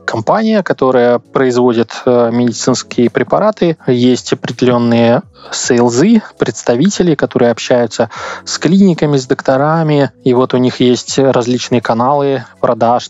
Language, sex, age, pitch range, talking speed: Russian, male, 20-39, 120-140 Hz, 105 wpm